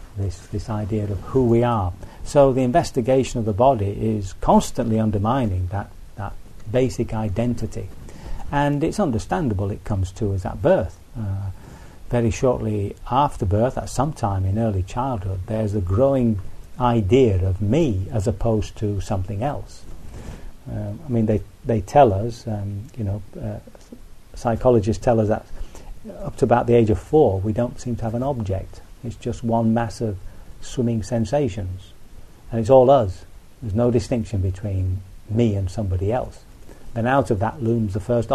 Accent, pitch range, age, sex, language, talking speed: British, 100-120 Hz, 40-59, male, English, 165 wpm